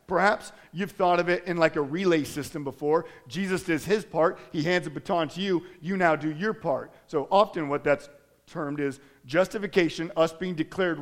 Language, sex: English, male